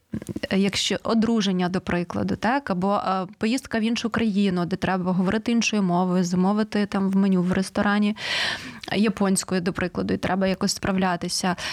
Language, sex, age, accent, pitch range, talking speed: Ukrainian, female, 20-39, native, 190-225 Hz, 145 wpm